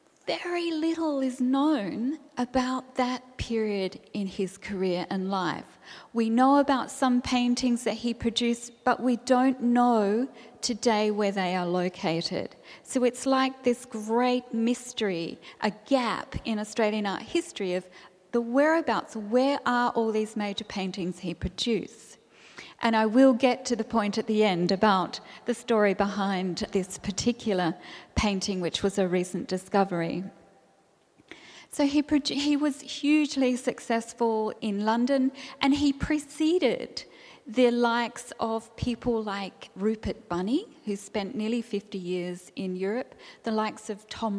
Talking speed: 140 wpm